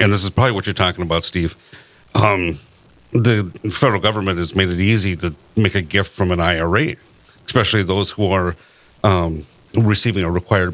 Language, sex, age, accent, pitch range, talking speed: English, male, 60-79, American, 85-105 Hz, 180 wpm